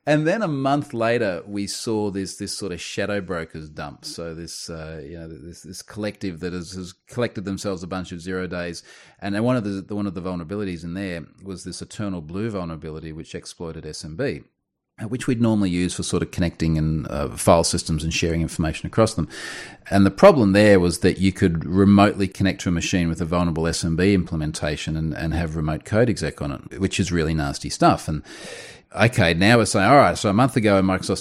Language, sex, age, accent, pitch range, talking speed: English, male, 30-49, Australian, 85-115 Hz, 210 wpm